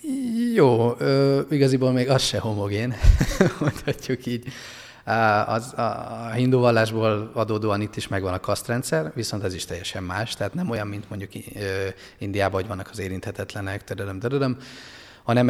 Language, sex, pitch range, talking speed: Hungarian, male, 100-125 Hz, 140 wpm